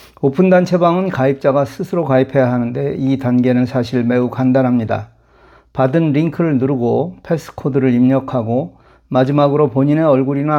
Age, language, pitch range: 40-59, Korean, 125-150 Hz